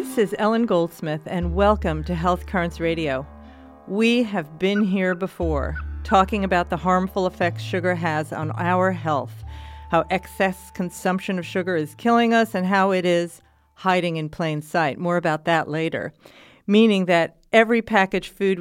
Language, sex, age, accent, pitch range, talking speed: English, female, 50-69, American, 160-205 Hz, 160 wpm